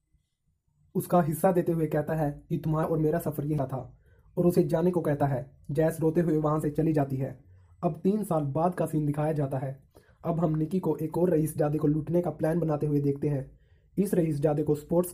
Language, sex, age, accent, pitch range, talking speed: Hindi, male, 20-39, native, 145-170 Hz, 225 wpm